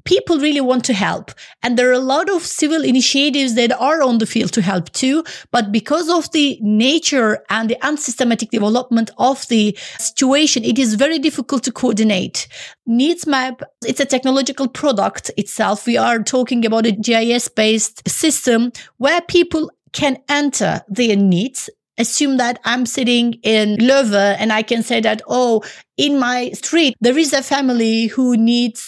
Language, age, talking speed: English, 30-49, 170 wpm